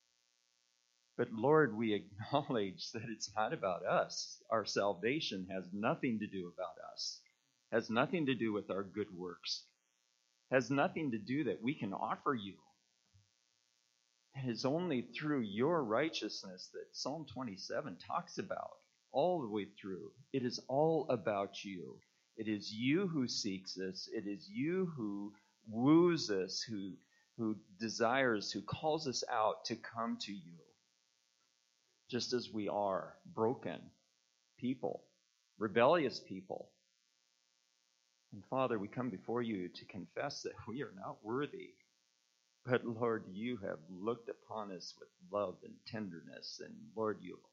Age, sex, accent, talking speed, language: 40-59, male, American, 140 wpm, English